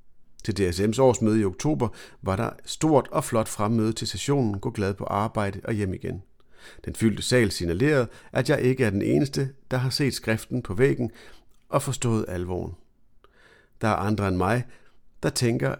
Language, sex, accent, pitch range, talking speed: Danish, male, native, 105-130 Hz, 175 wpm